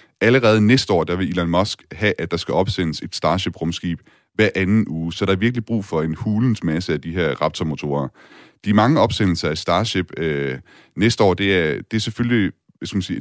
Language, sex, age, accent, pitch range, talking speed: Danish, male, 30-49, native, 80-100 Hz, 215 wpm